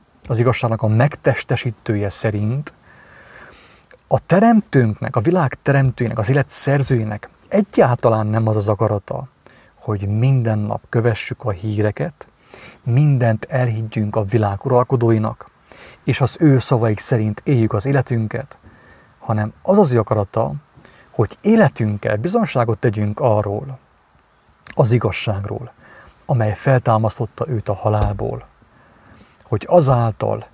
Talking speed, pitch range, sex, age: 105 wpm, 110-135 Hz, male, 30-49